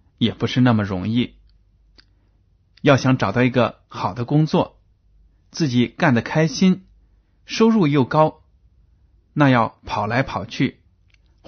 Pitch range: 95-145 Hz